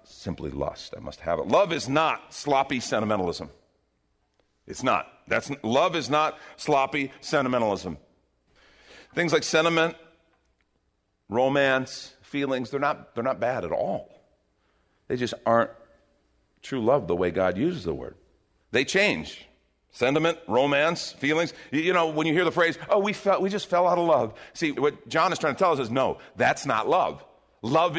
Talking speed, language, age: 170 wpm, English, 50-69